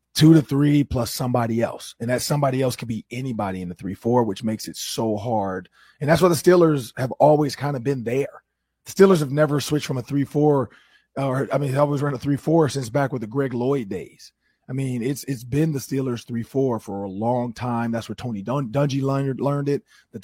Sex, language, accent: male, English, American